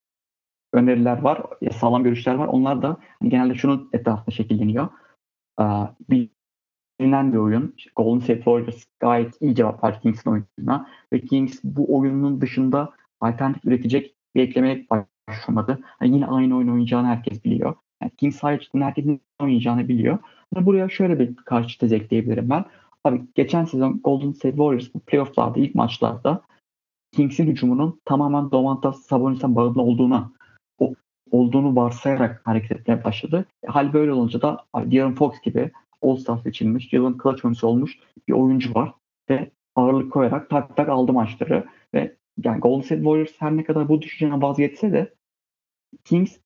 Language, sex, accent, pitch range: Turkish, male, native, 120-140 Hz